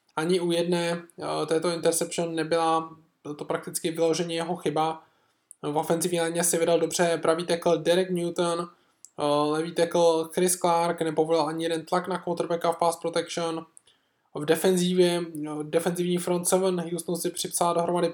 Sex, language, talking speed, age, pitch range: male, Czech, 145 wpm, 20-39, 160-175 Hz